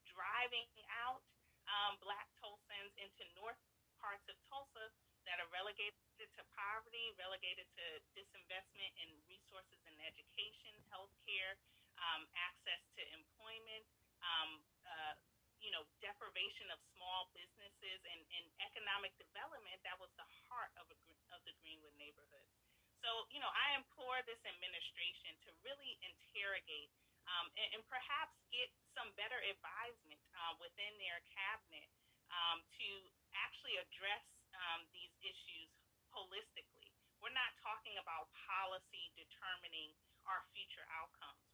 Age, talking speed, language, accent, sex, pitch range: 30-49, 125 wpm, English, American, female, 170-220 Hz